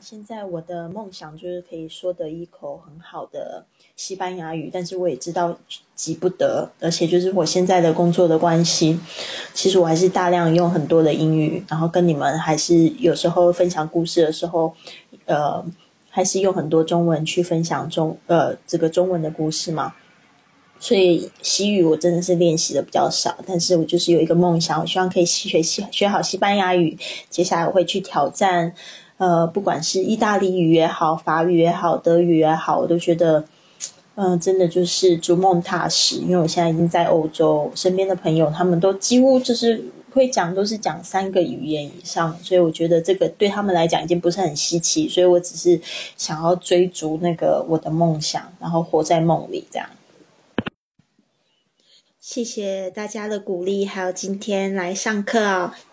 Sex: female